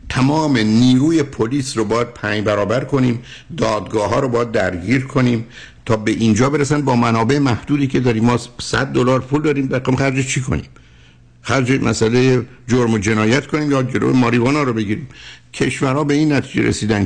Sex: male